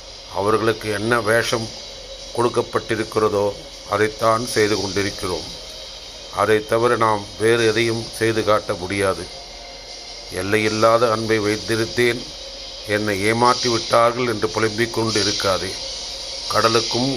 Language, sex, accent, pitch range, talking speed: Tamil, male, native, 100-115 Hz, 85 wpm